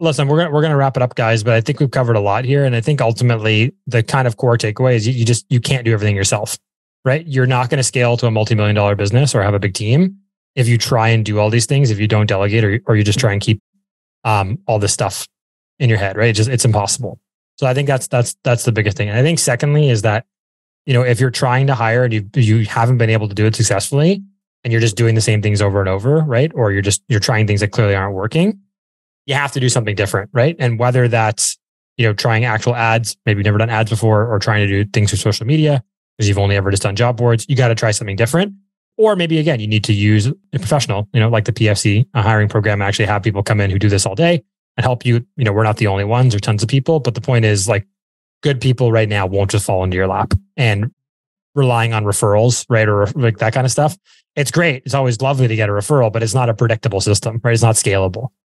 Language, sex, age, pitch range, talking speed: English, male, 20-39, 110-135 Hz, 275 wpm